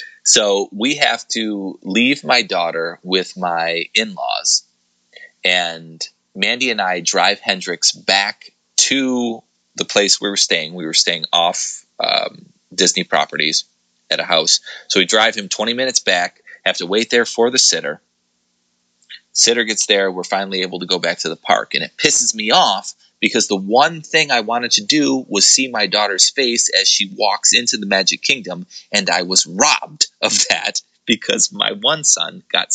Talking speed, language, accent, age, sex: 175 wpm, English, American, 30-49, male